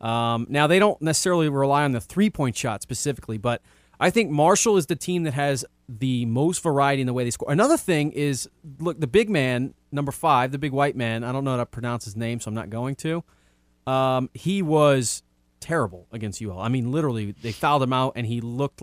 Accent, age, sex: American, 30-49, male